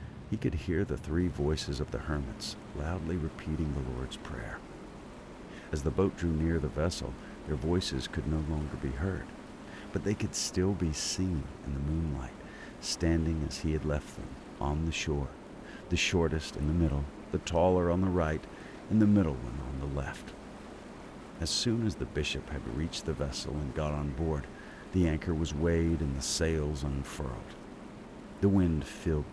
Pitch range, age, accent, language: 70-90 Hz, 50-69, American, English